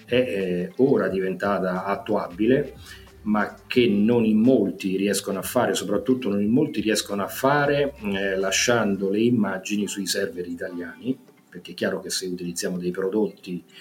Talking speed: 150 wpm